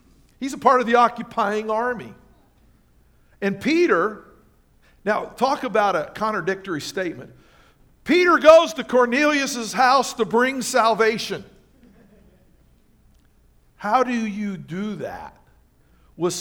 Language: English